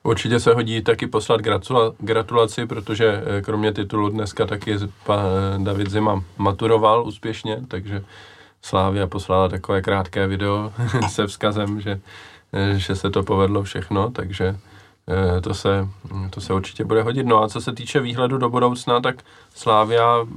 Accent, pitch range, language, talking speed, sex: native, 100-110 Hz, Czech, 140 wpm, male